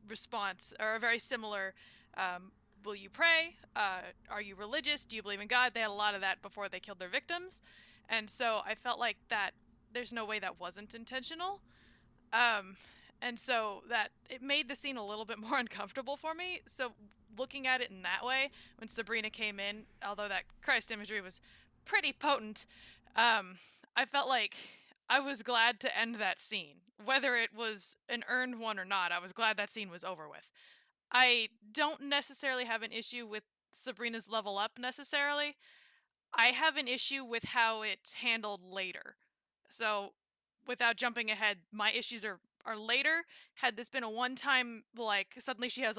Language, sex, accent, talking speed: English, female, American, 185 wpm